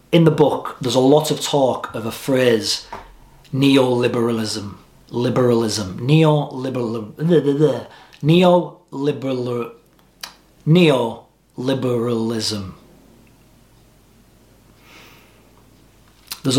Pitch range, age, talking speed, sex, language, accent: 120-150 Hz, 30-49, 60 wpm, male, English, British